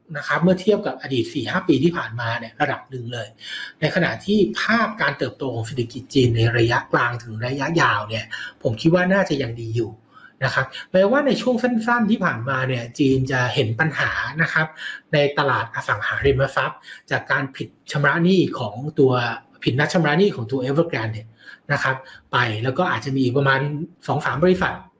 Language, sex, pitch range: Thai, male, 125-180 Hz